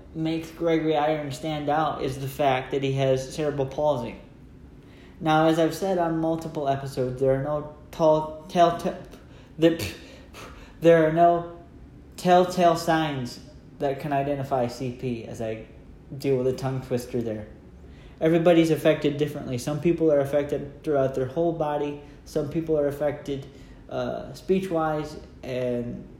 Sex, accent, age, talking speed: male, American, 10-29, 140 wpm